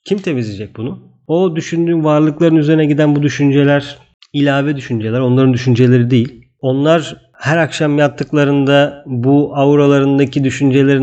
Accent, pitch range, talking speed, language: native, 125-165 Hz, 120 wpm, Turkish